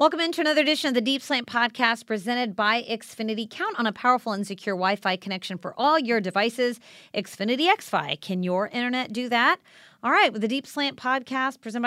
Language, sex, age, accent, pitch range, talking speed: English, female, 40-59, American, 185-240 Hz, 195 wpm